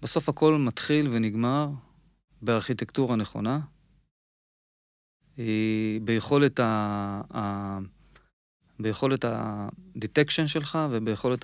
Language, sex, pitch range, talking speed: English, male, 105-135 Hz, 70 wpm